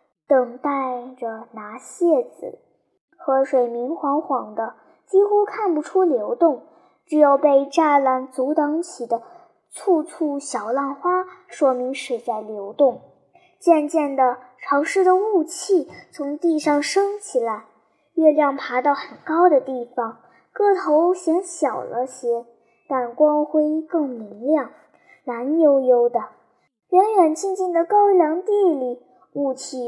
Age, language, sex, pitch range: 10-29, Chinese, male, 255-345 Hz